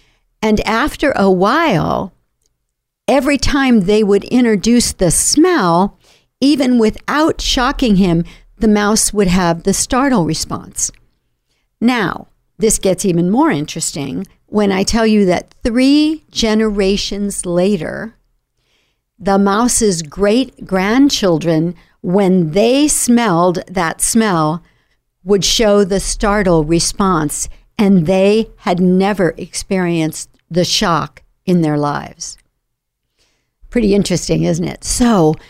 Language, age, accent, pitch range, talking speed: English, 60-79, American, 175-225 Hz, 110 wpm